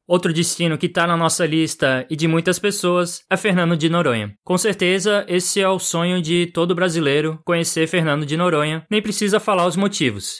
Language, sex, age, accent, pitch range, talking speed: Portuguese, male, 20-39, Brazilian, 150-180 Hz, 190 wpm